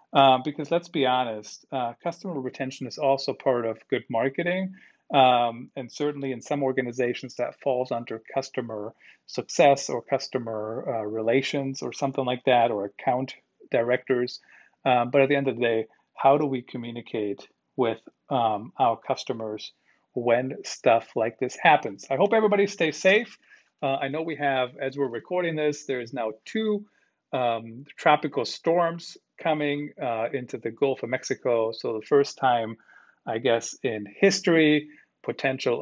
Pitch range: 115-150 Hz